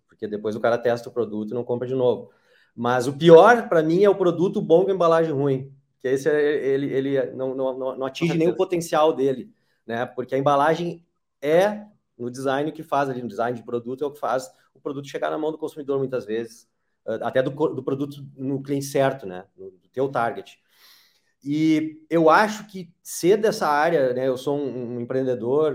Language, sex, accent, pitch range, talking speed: Portuguese, male, Brazilian, 125-165 Hz, 205 wpm